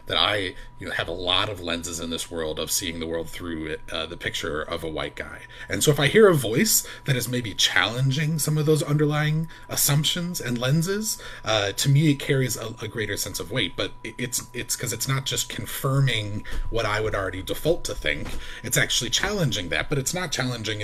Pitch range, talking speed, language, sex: 95-130 Hz, 220 wpm, English, male